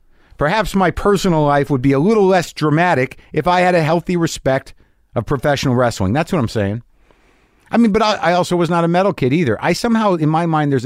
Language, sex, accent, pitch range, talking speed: English, male, American, 115-165 Hz, 225 wpm